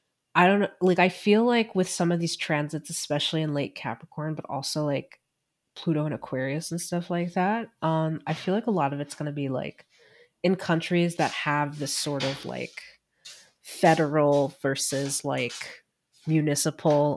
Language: English